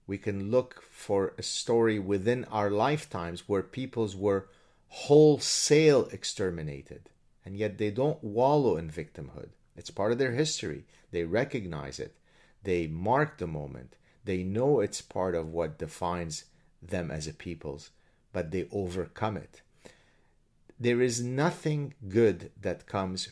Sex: male